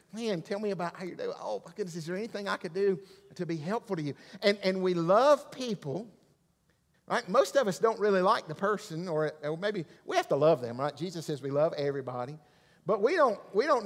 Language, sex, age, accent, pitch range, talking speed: English, male, 50-69, American, 150-200 Hz, 235 wpm